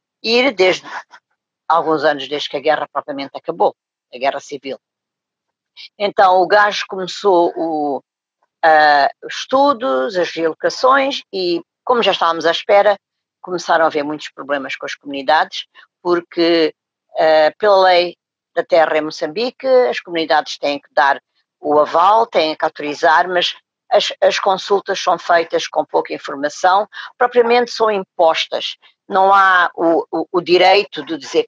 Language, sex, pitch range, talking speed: English, female, 155-210 Hz, 135 wpm